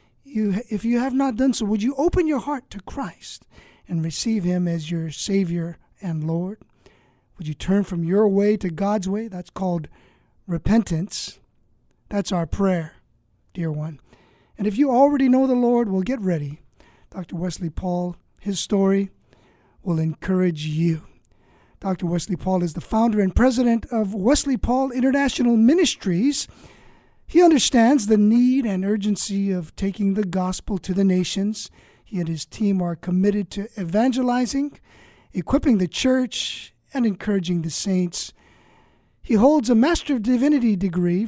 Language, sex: English, male